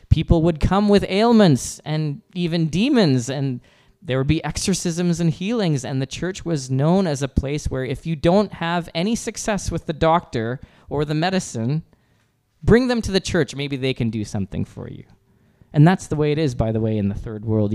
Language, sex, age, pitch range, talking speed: English, male, 20-39, 110-150 Hz, 205 wpm